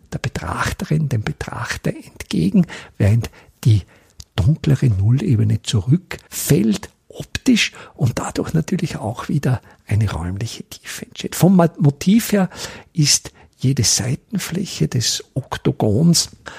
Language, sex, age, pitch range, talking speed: German, male, 50-69, 100-145 Hz, 100 wpm